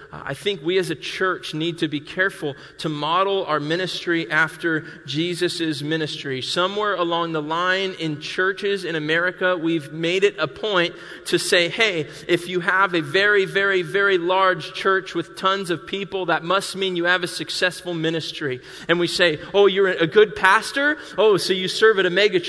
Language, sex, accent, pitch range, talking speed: English, male, American, 180-230 Hz, 185 wpm